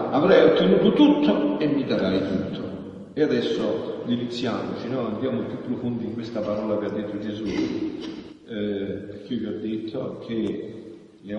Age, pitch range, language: 50-69, 105-135 Hz, Italian